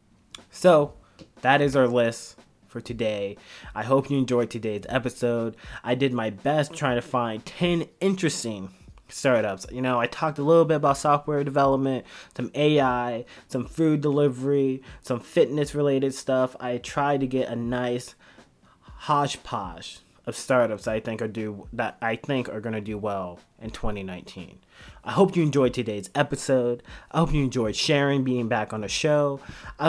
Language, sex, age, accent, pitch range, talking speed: English, male, 20-39, American, 115-145 Hz, 165 wpm